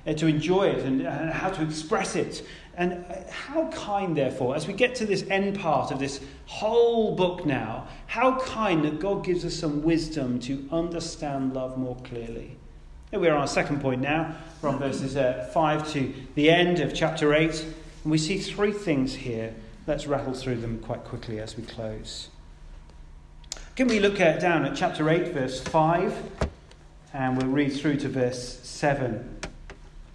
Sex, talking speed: male, 175 wpm